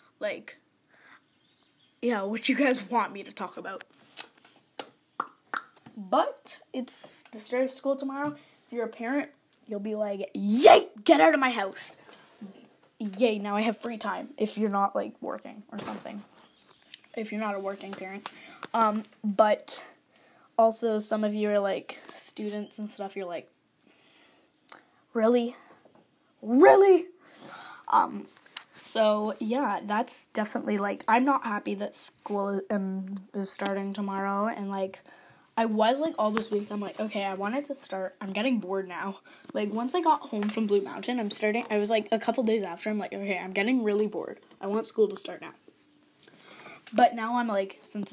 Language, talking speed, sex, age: English, 165 wpm, female, 10-29